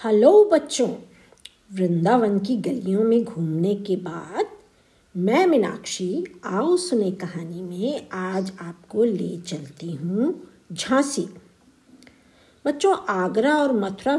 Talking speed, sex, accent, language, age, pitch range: 105 wpm, female, native, Hindi, 50-69, 180-265 Hz